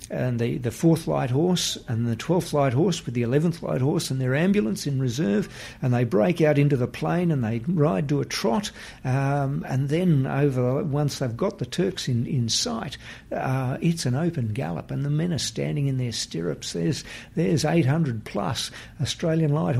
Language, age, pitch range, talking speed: English, 50-69, 120-150 Hz, 195 wpm